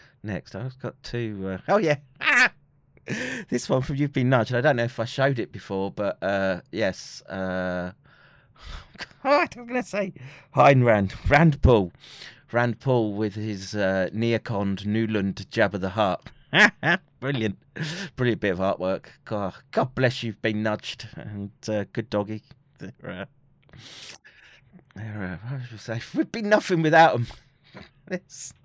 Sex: male